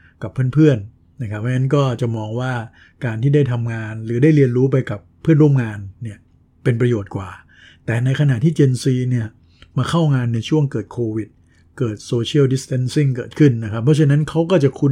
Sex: male